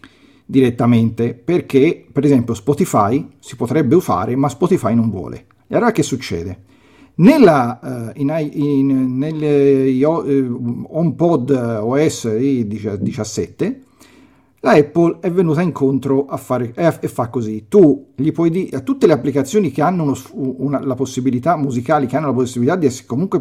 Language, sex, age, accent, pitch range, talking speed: Italian, male, 40-59, native, 125-160 Hz, 150 wpm